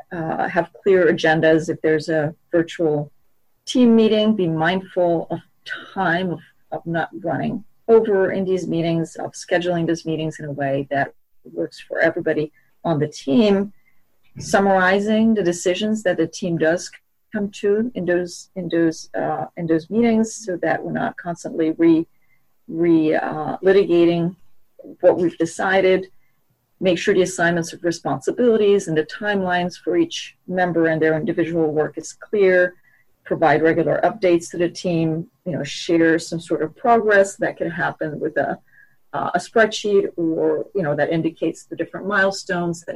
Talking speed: 155 wpm